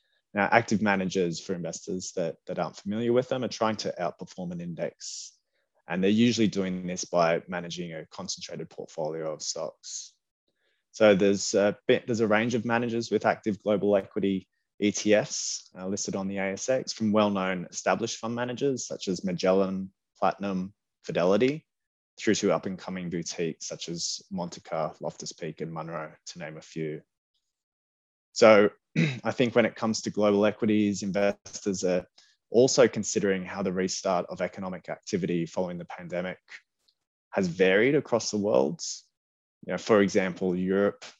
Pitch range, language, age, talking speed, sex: 90-110 Hz, English, 20-39, 145 wpm, male